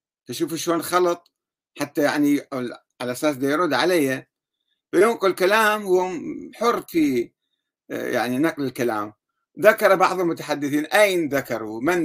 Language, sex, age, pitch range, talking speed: Arabic, male, 60-79, 130-185 Hz, 115 wpm